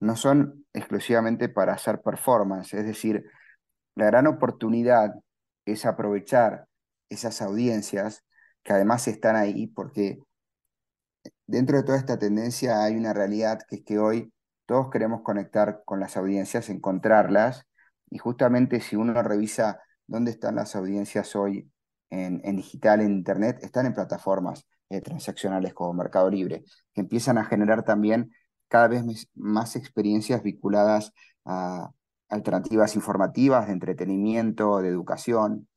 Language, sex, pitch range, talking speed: Portuguese, male, 100-120 Hz, 135 wpm